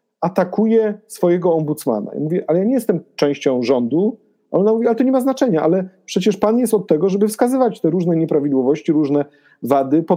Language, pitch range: Polish, 170-210 Hz